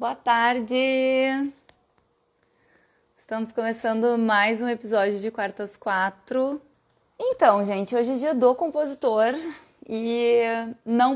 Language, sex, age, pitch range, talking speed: Portuguese, female, 20-39, 180-240 Hz, 100 wpm